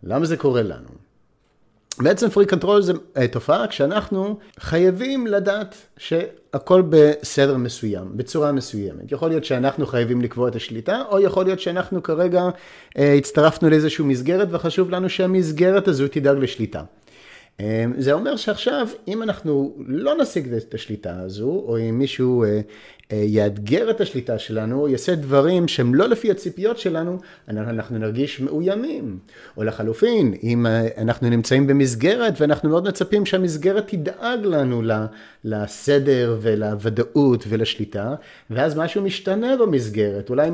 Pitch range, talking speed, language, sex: 120-185 Hz, 130 wpm, Hebrew, male